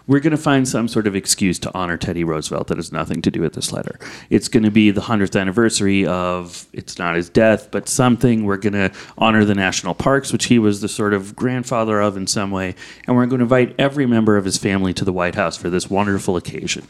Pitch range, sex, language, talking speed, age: 100-125 Hz, male, English, 250 wpm, 30-49